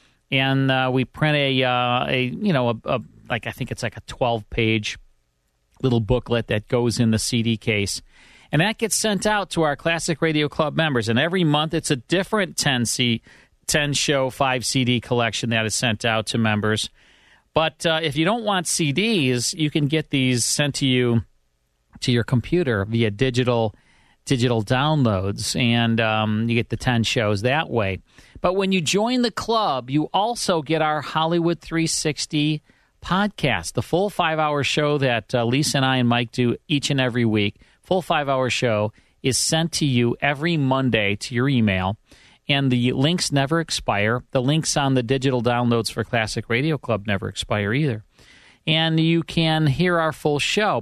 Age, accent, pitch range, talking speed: 40-59, American, 115-160 Hz, 180 wpm